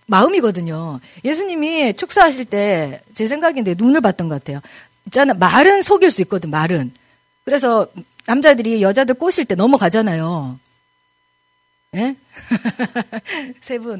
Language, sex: Korean, female